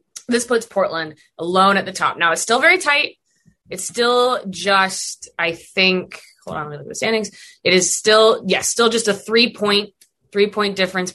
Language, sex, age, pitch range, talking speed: English, female, 20-39, 160-220 Hz, 205 wpm